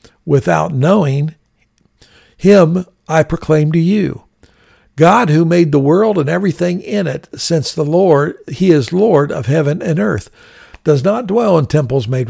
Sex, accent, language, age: male, American, English, 60-79